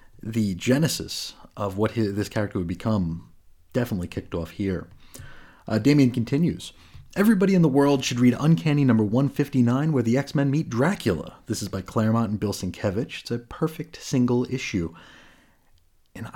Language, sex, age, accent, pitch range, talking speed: English, male, 30-49, American, 95-130 Hz, 155 wpm